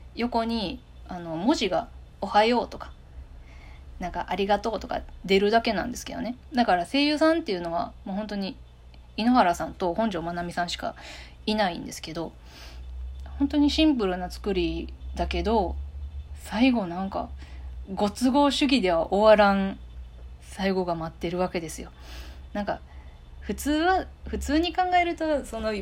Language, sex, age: Japanese, female, 20-39